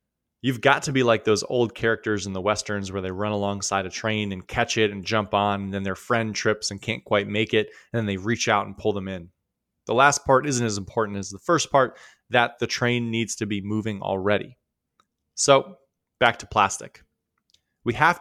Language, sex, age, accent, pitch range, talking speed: English, male, 20-39, American, 105-130 Hz, 220 wpm